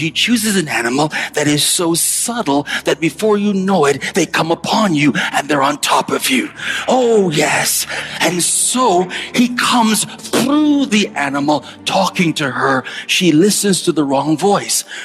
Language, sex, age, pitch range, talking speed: English, male, 40-59, 170-245 Hz, 165 wpm